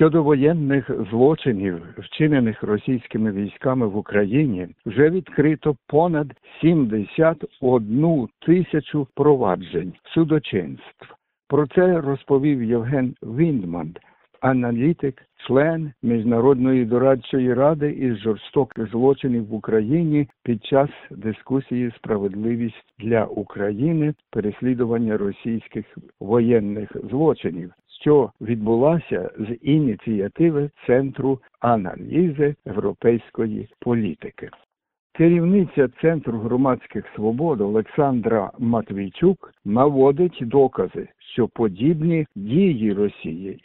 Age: 60-79